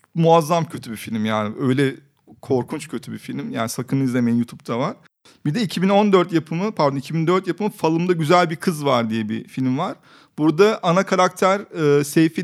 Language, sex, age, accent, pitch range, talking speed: Turkish, male, 40-59, native, 135-170 Hz, 175 wpm